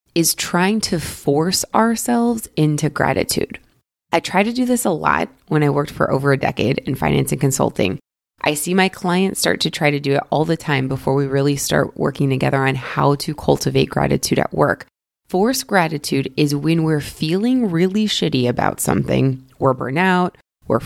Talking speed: 185 wpm